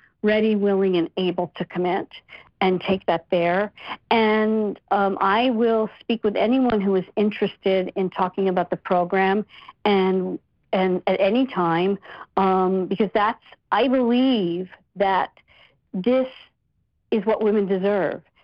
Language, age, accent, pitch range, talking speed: English, 50-69, American, 185-235 Hz, 135 wpm